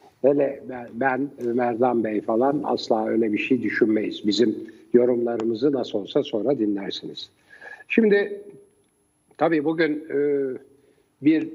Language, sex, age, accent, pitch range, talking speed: Turkish, male, 60-79, native, 120-145 Hz, 110 wpm